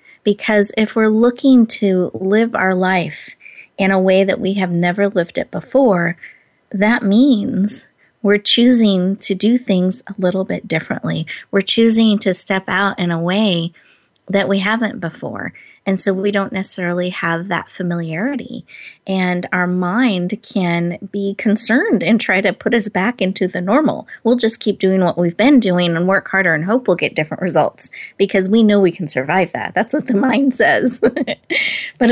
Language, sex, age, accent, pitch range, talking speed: English, female, 30-49, American, 175-215 Hz, 175 wpm